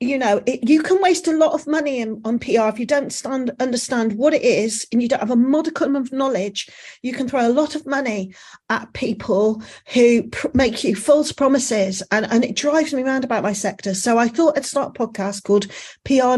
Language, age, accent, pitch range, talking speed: English, 40-59, British, 215-270 Hz, 225 wpm